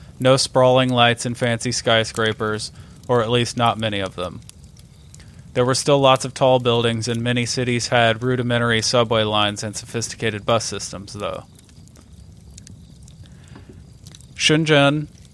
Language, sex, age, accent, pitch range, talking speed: English, male, 30-49, American, 110-130 Hz, 130 wpm